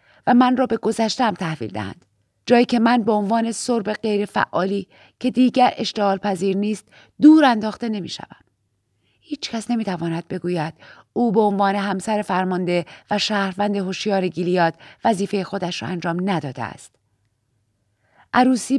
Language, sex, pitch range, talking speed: Persian, female, 165-225 Hz, 130 wpm